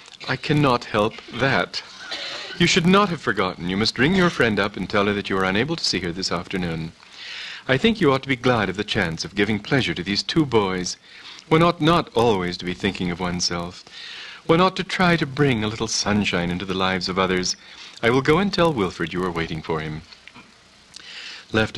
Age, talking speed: 40-59, 220 wpm